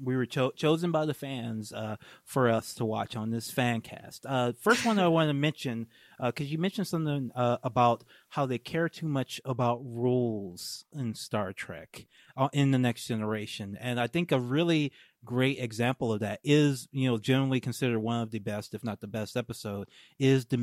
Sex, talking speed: male, 205 wpm